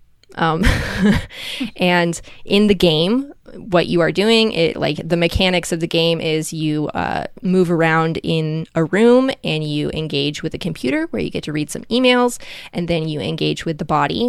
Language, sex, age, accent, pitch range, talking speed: English, female, 20-39, American, 165-205 Hz, 185 wpm